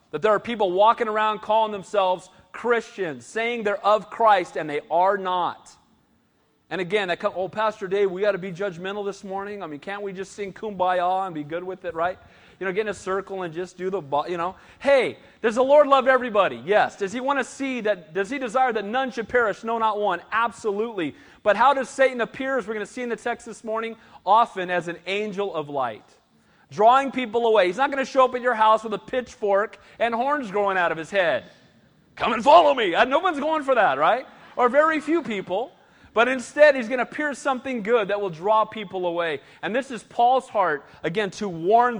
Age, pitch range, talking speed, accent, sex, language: 40-59, 180-235 Hz, 225 wpm, American, male, English